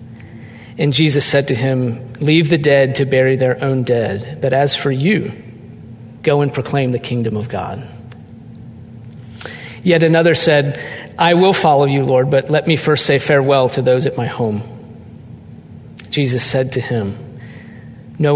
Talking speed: 155 wpm